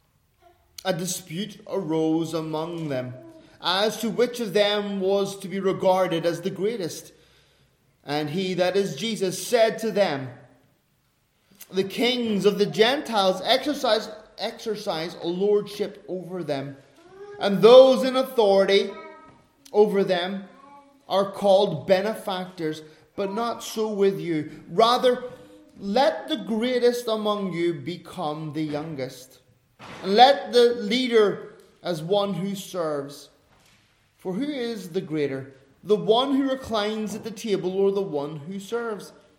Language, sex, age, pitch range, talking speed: English, male, 30-49, 155-215 Hz, 125 wpm